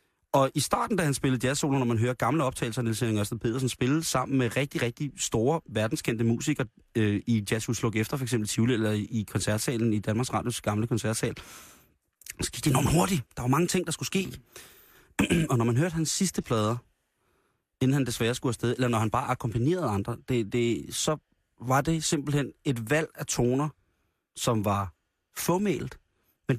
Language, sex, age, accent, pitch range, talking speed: Danish, male, 30-49, native, 115-145 Hz, 180 wpm